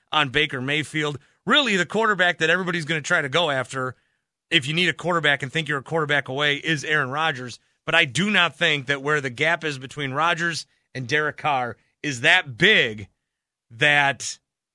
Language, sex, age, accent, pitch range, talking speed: English, male, 30-49, American, 130-165 Hz, 190 wpm